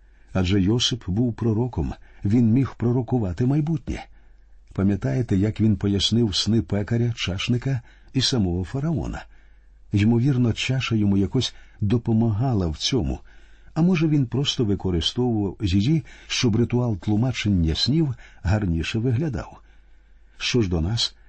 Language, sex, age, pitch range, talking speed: Ukrainian, male, 50-69, 95-125 Hz, 115 wpm